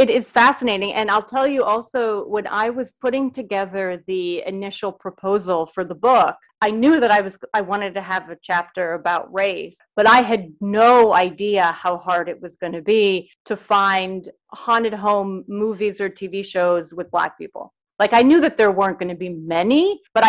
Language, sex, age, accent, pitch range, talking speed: English, female, 30-49, American, 180-225 Hz, 195 wpm